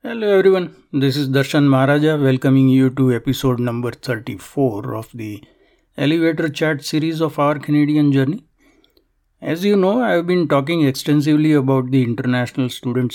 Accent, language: Indian, English